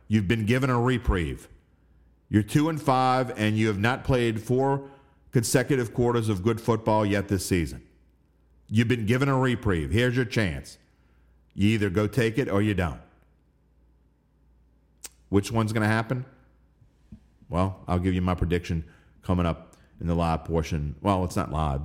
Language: English